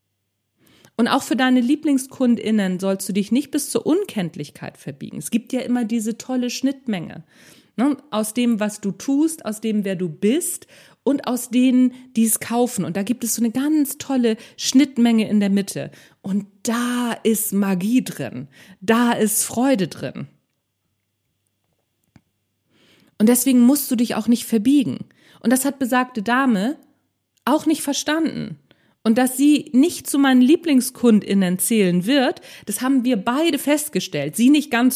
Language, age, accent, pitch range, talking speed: German, 40-59, German, 210-270 Hz, 155 wpm